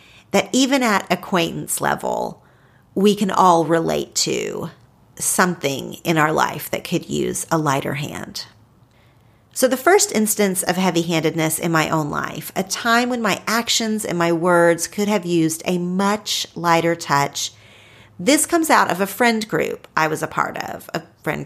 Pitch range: 160-230 Hz